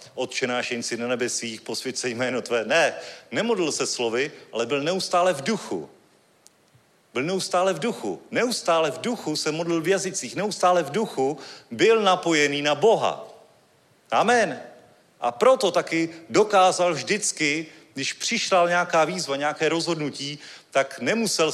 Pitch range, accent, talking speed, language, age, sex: 145-185 Hz, native, 135 wpm, Czech, 40-59, male